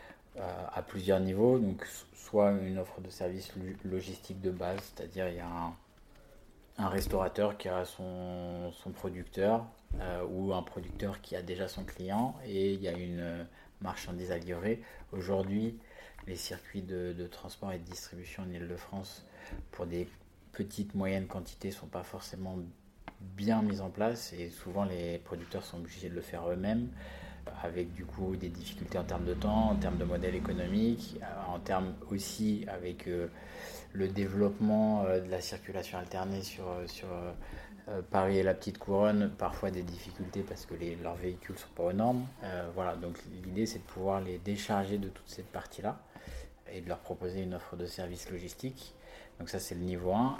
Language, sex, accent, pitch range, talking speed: French, male, French, 90-100 Hz, 180 wpm